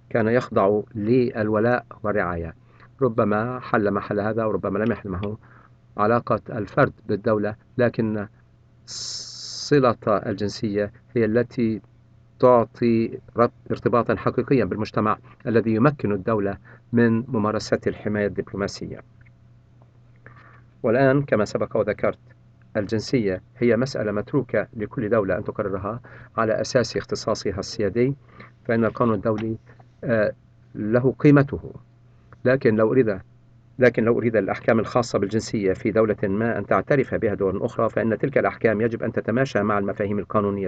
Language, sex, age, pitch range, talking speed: English, male, 50-69, 105-120 Hz, 110 wpm